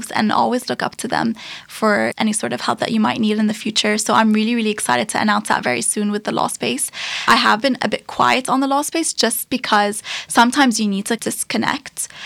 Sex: female